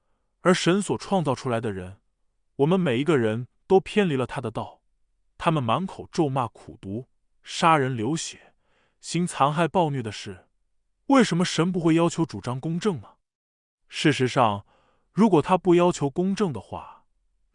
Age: 20-39